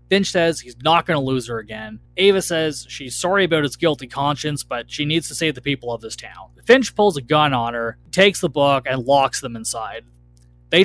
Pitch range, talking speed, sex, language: 125-175 Hz, 225 wpm, male, English